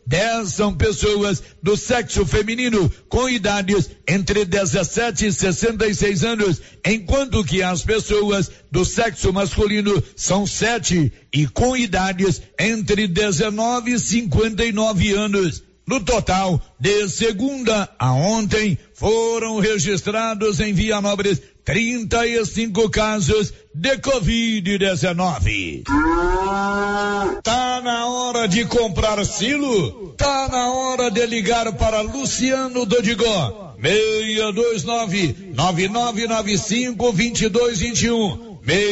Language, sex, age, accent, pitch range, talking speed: Portuguese, male, 60-79, Brazilian, 190-230 Hz, 90 wpm